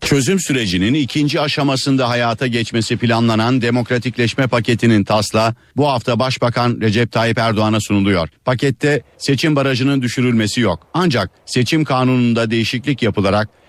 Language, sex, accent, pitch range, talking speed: Turkish, male, native, 110-140 Hz, 120 wpm